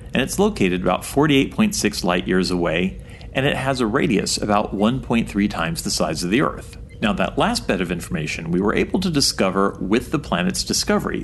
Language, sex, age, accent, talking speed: English, male, 40-59, American, 190 wpm